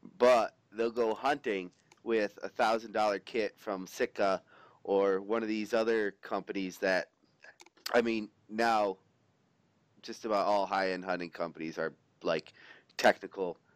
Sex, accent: male, American